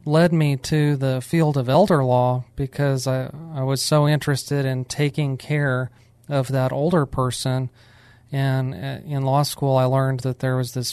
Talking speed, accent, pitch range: 170 wpm, American, 125-140 Hz